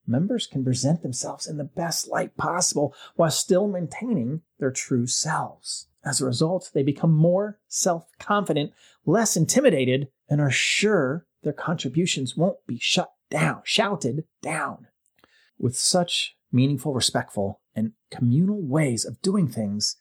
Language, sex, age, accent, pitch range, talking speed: English, male, 30-49, American, 130-180 Hz, 140 wpm